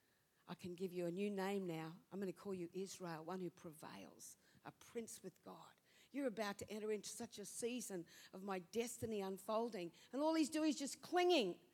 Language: English